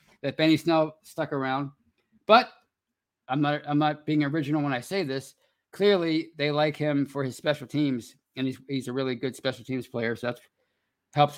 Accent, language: American, English